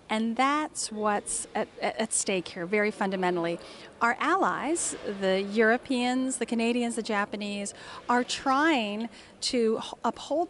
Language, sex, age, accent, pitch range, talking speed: English, female, 40-59, American, 200-260 Hz, 120 wpm